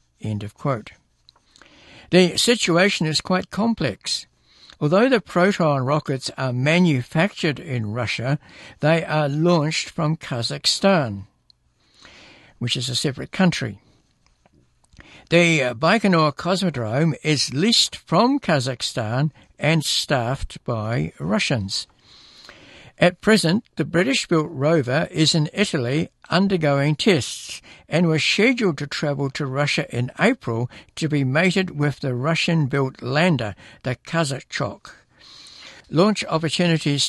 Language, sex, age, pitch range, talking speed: English, male, 60-79, 125-165 Hz, 105 wpm